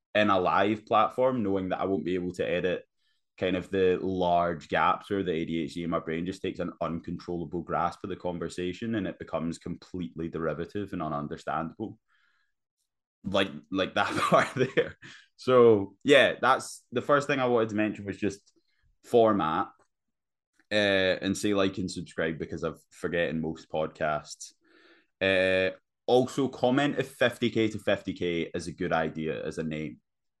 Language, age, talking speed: English, 20-39, 160 wpm